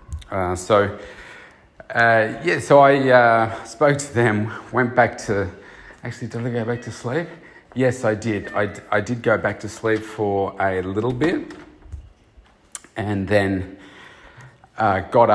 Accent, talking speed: Australian, 150 wpm